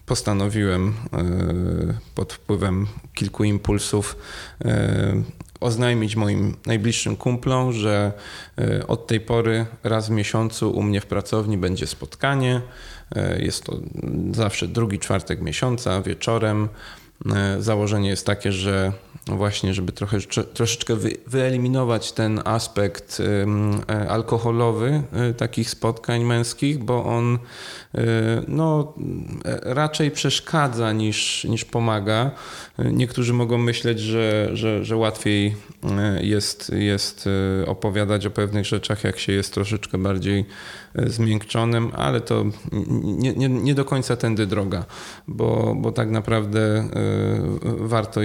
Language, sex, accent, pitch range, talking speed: Polish, male, native, 100-115 Hz, 105 wpm